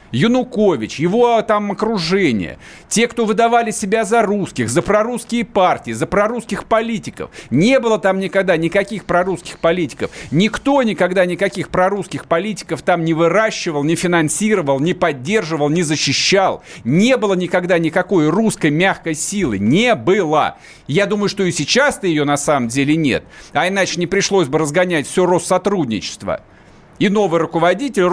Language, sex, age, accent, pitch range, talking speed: Russian, male, 50-69, native, 160-210 Hz, 145 wpm